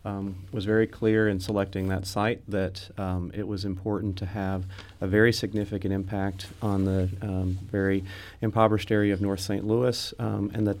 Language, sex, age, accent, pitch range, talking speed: English, male, 30-49, American, 95-105 Hz, 180 wpm